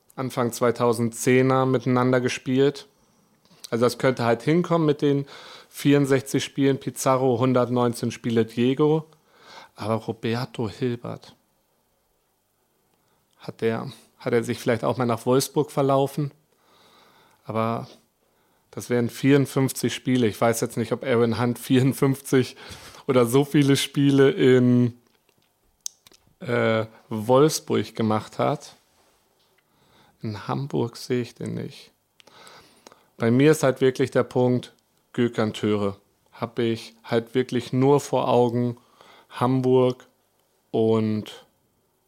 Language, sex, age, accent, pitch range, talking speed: German, male, 30-49, German, 115-135 Hz, 110 wpm